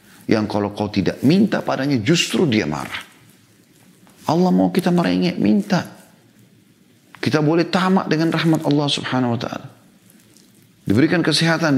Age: 40-59